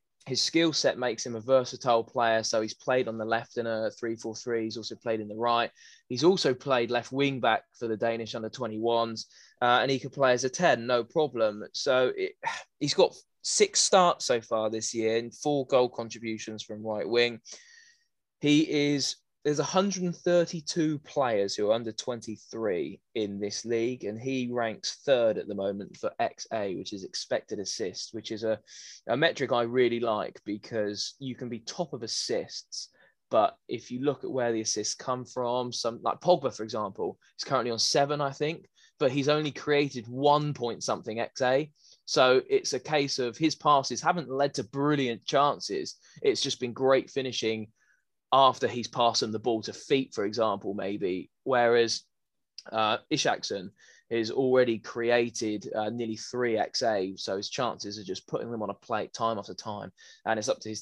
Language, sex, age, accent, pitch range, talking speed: English, male, 20-39, British, 115-140 Hz, 185 wpm